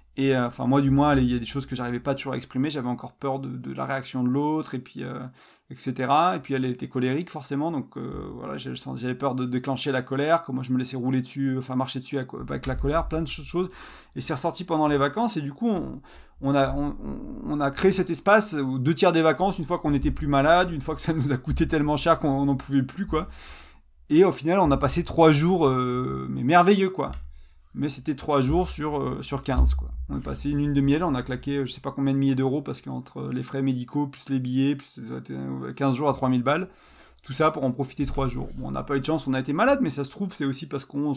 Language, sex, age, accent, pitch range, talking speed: French, male, 30-49, French, 130-150 Hz, 280 wpm